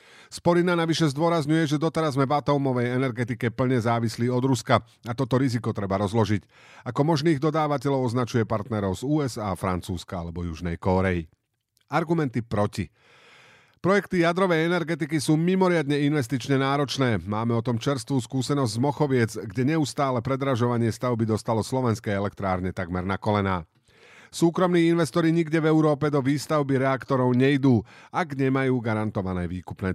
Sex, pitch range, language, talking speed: male, 105-145 Hz, Slovak, 135 wpm